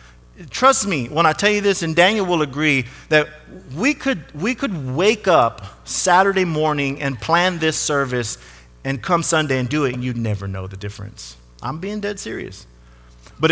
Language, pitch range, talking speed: English, 130-185 Hz, 180 wpm